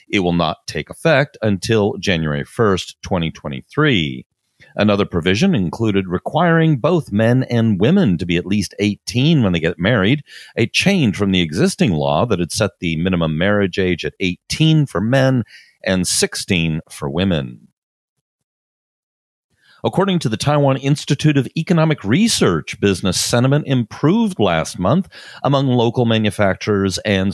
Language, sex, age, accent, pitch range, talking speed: English, male, 40-59, American, 90-130 Hz, 140 wpm